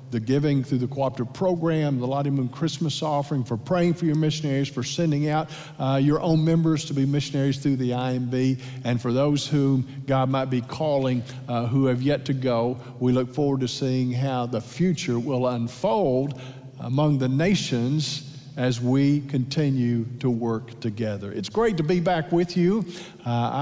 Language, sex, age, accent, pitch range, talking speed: English, male, 50-69, American, 130-165 Hz, 180 wpm